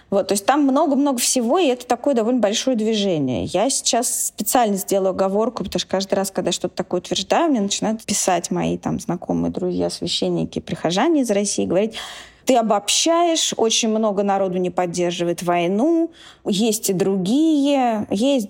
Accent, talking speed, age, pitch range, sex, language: native, 160 wpm, 20-39, 175-225 Hz, female, Russian